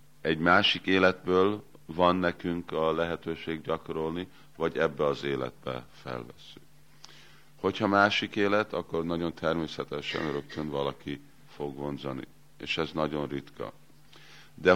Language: Hungarian